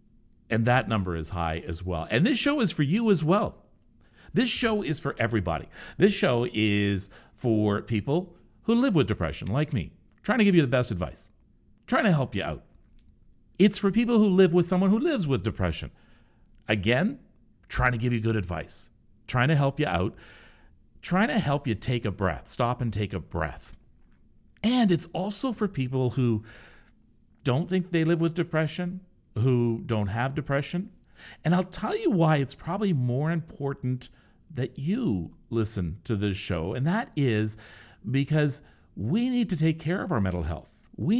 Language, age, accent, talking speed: English, 50-69, American, 180 wpm